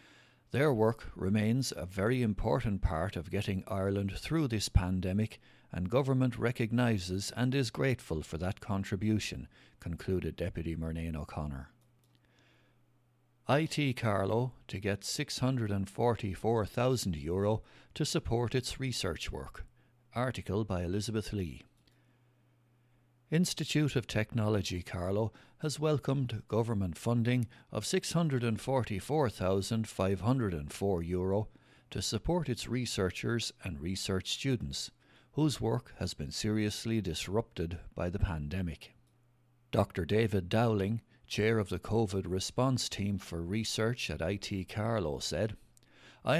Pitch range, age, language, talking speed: 95-125 Hz, 60-79, English, 105 wpm